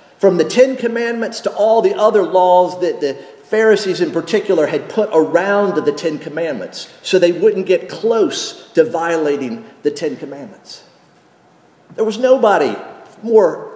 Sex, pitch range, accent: male, 155-215 Hz, American